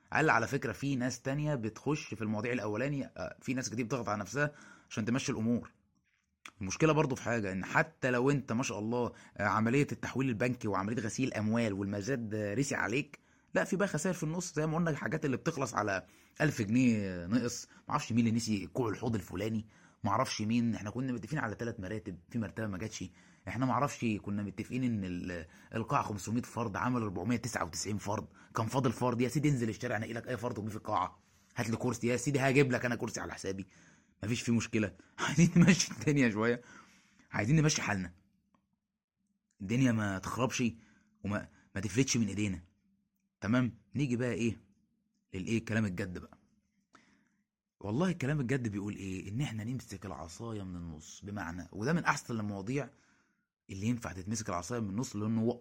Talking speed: 175 wpm